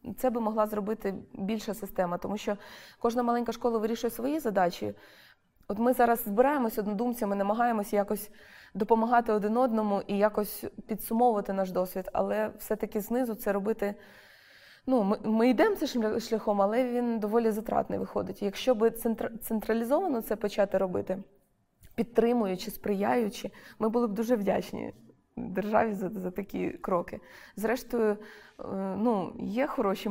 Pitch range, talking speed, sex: 195-230 Hz, 135 wpm, female